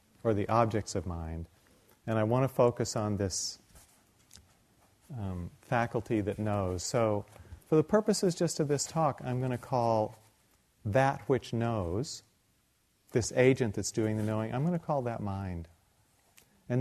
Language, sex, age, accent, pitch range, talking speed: English, male, 40-59, American, 100-135 Hz, 155 wpm